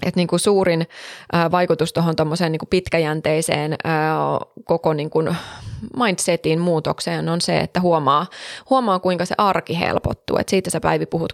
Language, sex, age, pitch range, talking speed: Finnish, female, 20-39, 160-190 Hz, 125 wpm